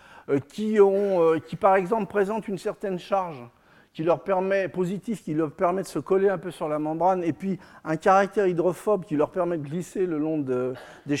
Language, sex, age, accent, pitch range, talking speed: French, male, 50-69, French, 155-210 Hz, 205 wpm